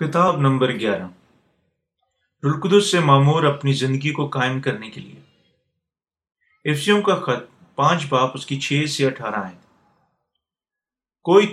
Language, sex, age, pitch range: Urdu, male, 40-59, 135-175 Hz